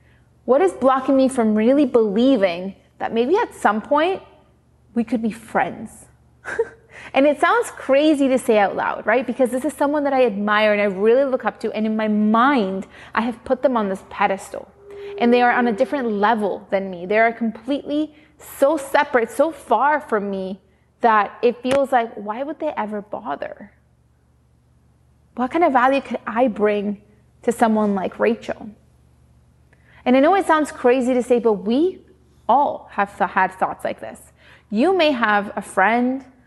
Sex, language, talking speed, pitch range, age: female, English, 180 wpm, 200-260 Hz, 20-39